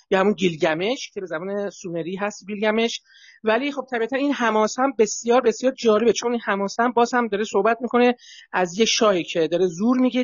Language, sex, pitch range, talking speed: Persian, male, 185-235 Hz, 190 wpm